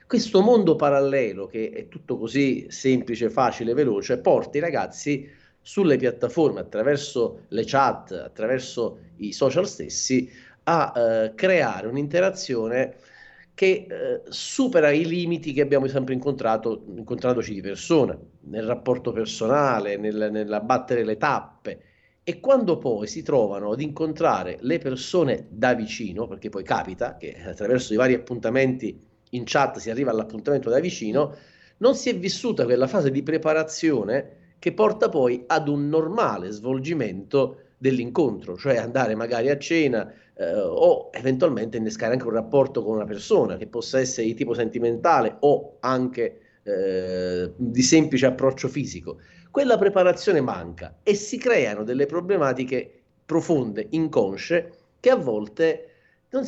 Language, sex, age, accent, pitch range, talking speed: Italian, male, 40-59, native, 115-165 Hz, 135 wpm